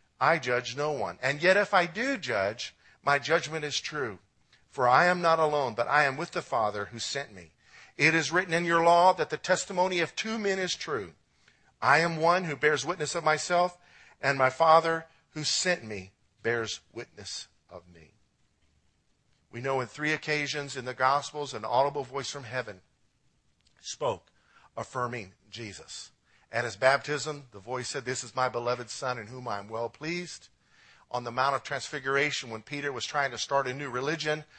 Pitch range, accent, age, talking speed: 125-160 Hz, American, 50-69, 185 wpm